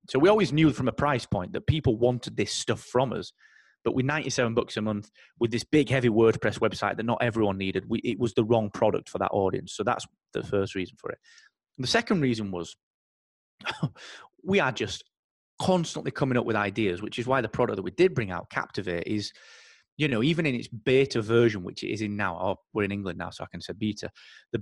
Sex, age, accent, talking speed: male, 30-49, British, 230 wpm